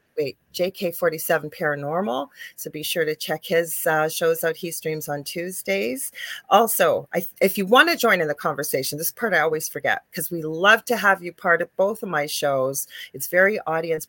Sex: female